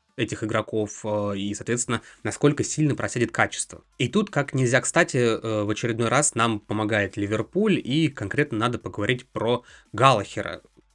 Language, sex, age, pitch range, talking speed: Russian, male, 20-39, 105-135 Hz, 135 wpm